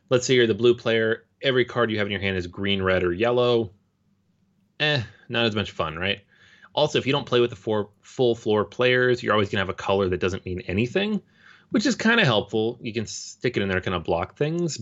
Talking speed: 245 wpm